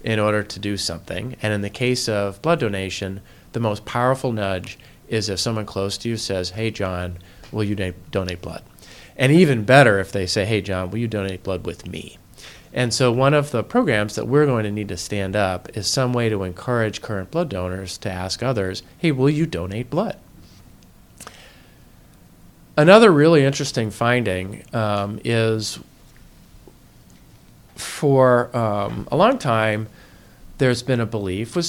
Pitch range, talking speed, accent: 95-125 Hz, 170 wpm, American